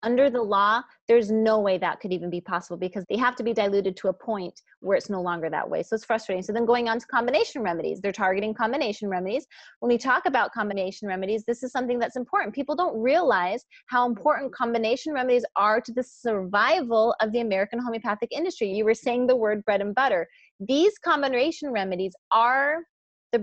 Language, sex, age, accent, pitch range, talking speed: English, female, 30-49, American, 200-255 Hz, 205 wpm